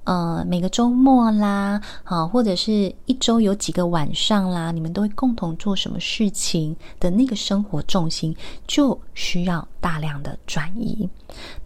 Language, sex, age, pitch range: Chinese, female, 20-39, 175-245 Hz